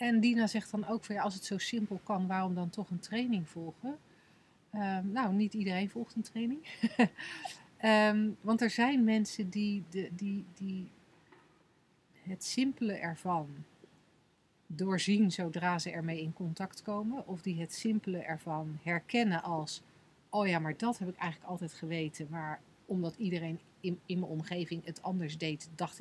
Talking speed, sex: 160 wpm, female